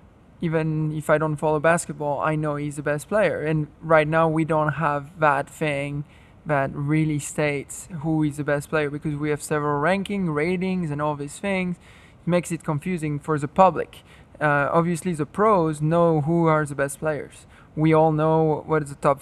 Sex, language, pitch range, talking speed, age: male, English, 150-165 Hz, 190 wpm, 20-39